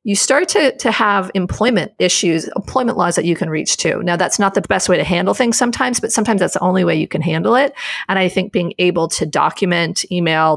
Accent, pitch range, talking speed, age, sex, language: American, 170-205 Hz, 240 wpm, 40-59, female, English